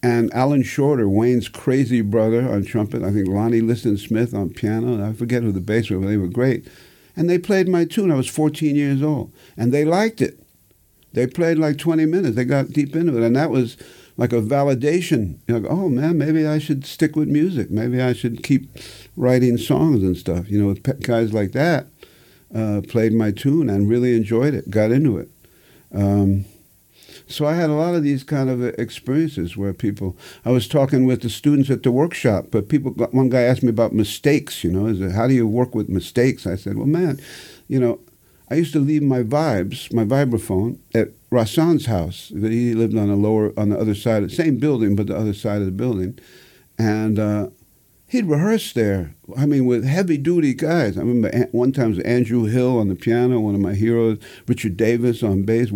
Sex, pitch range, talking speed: male, 110-145 Hz, 210 wpm